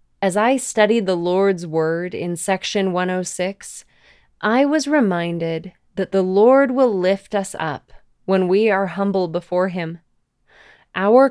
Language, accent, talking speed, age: English, American, 140 wpm, 20-39